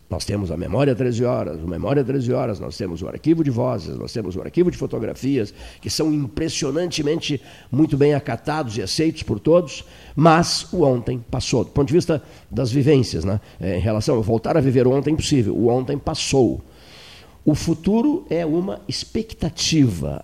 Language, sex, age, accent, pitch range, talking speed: Portuguese, male, 50-69, Brazilian, 110-145 Hz, 185 wpm